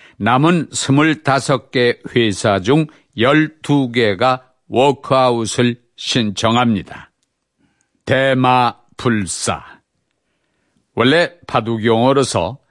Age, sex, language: 50-69, male, Korean